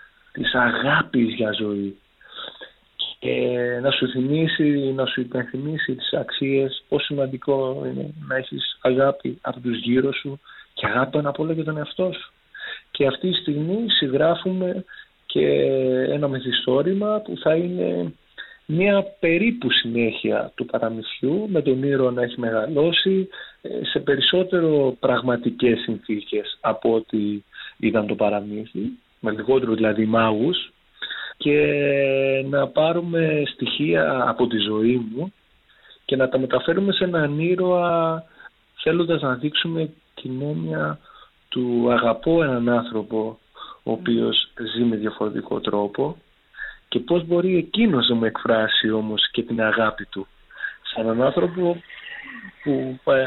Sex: male